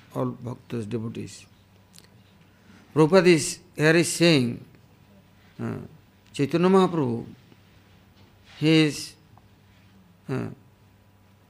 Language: English